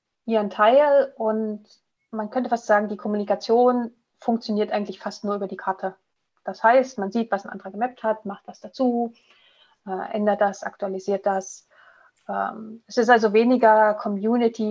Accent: German